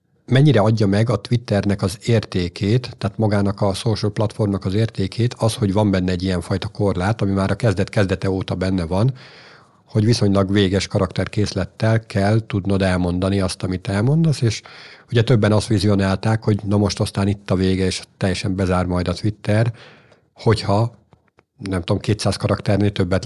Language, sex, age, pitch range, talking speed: Hungarian, male, 50-69, 100-120 Hz, 165 wpm